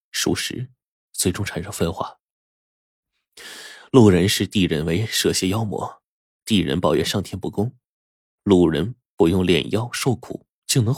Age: 20-39